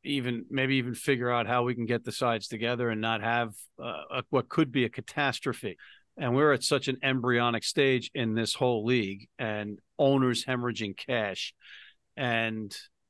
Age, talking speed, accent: 50-69, 170 wpm, American